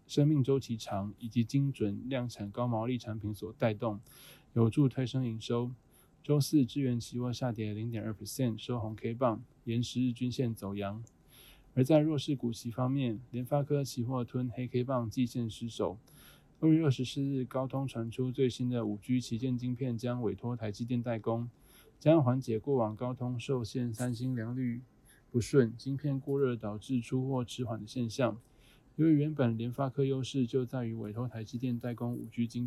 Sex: male